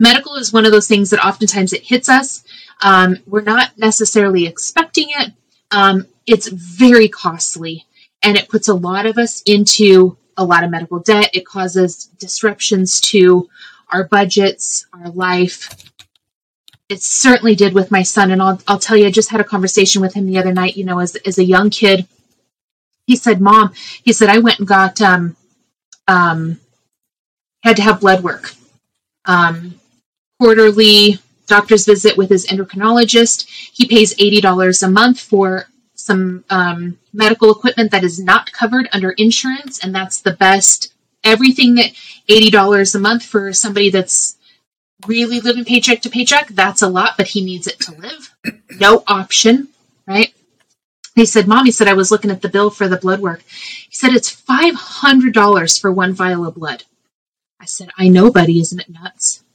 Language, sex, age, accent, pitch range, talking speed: English, female, 30-49, American, 185-225 Hz, 175 wpm